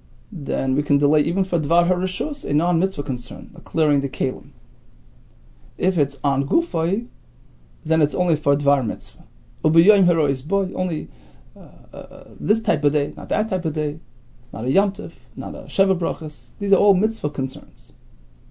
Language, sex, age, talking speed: English, male, 30-49, 160 wpm